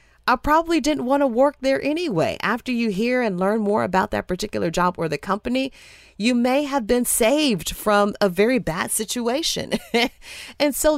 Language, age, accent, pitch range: English, 30-49, American, 170-245 Hz